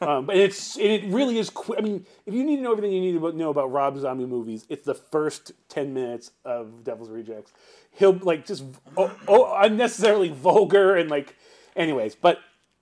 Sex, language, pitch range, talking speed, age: male, English, 130-185 Hz, 195 wpm, 30-49